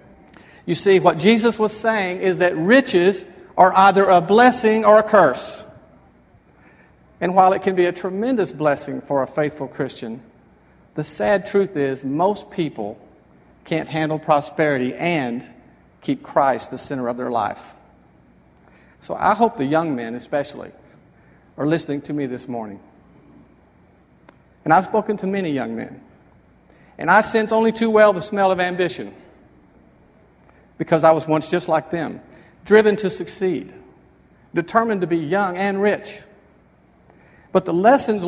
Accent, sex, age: American, male, 50-69